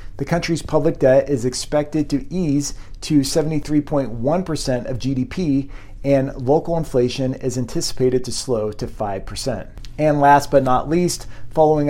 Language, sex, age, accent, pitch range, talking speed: English, male, 40-59, American, 120-150 Hz, 135 wpm